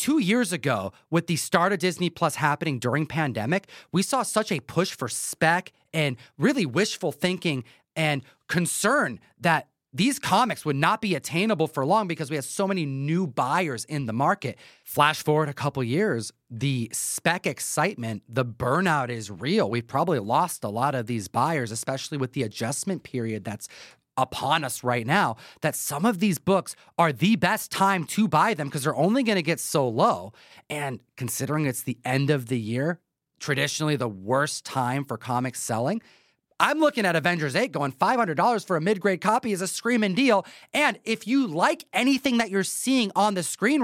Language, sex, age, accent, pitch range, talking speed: English, male, 30-49, American, 135-205 Hz, 185 wpm